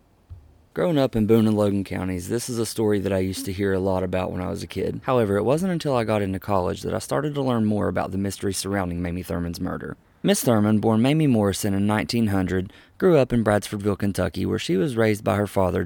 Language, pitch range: English, 95-120 Hz